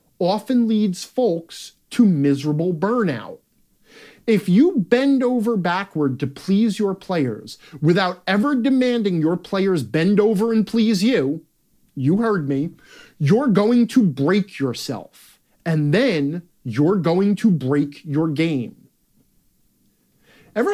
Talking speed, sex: 120 wpm, male